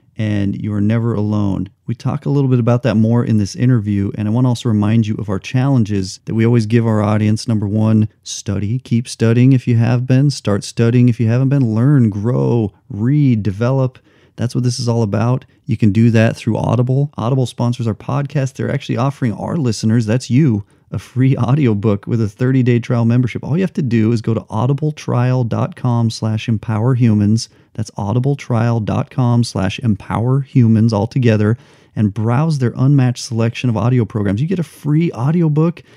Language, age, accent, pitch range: English, 40-59, American, 110-130 Hz